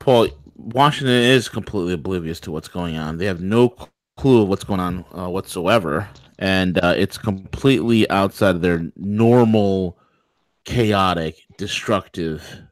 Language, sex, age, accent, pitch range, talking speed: English, male, 30-49, American, 90-115 Hz, 135 wpm